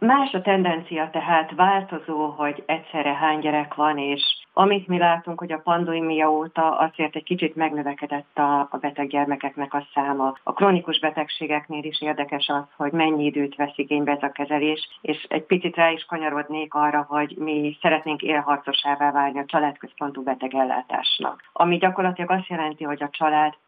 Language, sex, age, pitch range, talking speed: Hungarian, female, 40-59, 145-160 Hz, 155 wpm